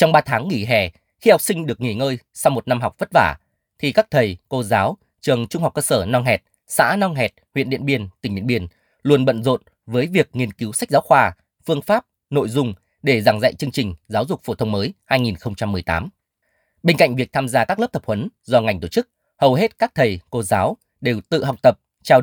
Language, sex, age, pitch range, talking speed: Vietnamese, male, 20-39, 110-145 Hz, 235 wpm